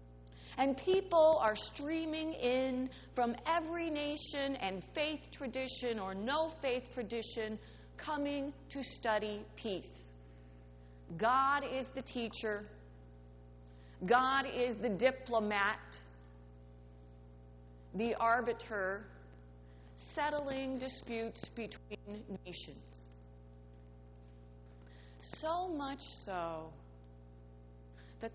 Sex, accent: female, American